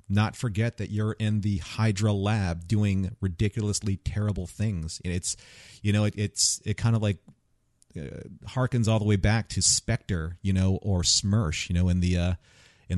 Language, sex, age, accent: English, male, 40-59, American